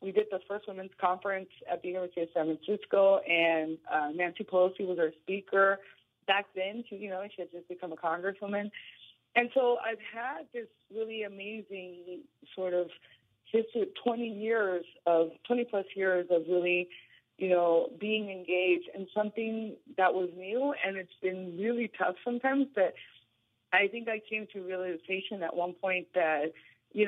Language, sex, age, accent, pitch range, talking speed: English, female, 30-49, American, 170-200 Hz, 170 wpm